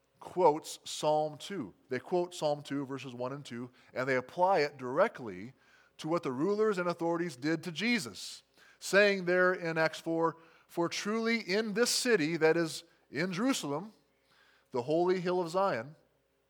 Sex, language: male, English